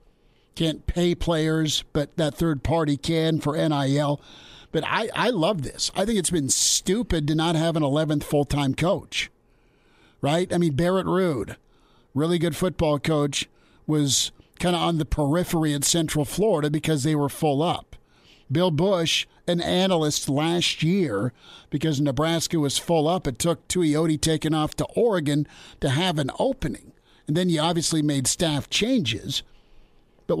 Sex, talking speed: male, 160 wpm